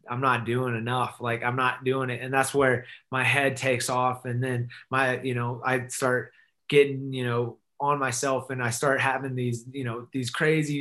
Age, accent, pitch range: 20-39, American, 120-140 Hz